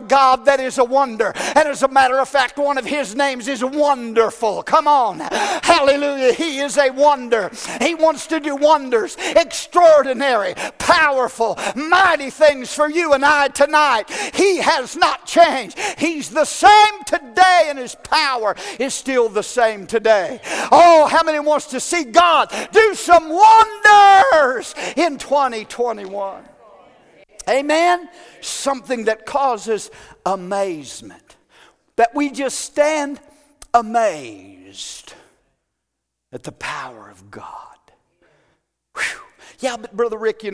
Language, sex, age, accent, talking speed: English, male, 50-69, American, 125 wpm